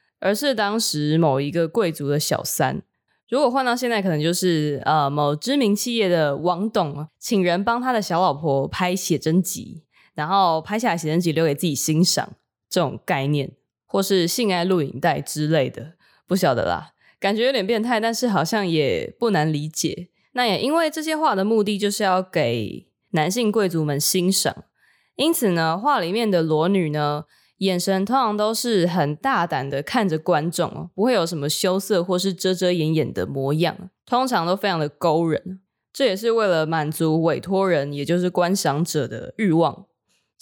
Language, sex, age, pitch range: Chinese, female, 20-39, 160-210 Hz